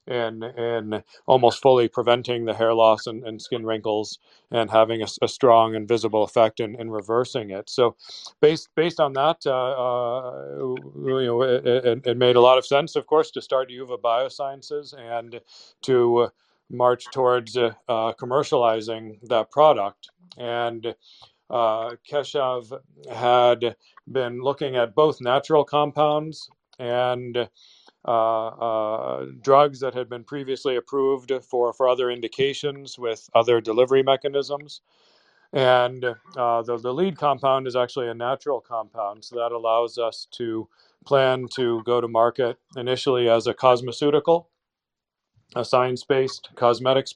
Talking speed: 140 wpm